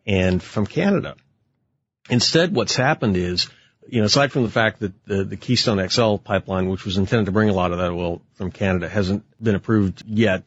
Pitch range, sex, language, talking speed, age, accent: 95-120 Hz, male, English, 200 wpm, 40-59, American